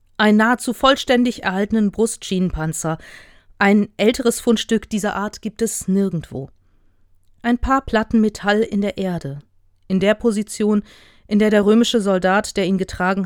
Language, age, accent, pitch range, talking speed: German, 40-59, German, 150-220 Hz, 140 wpm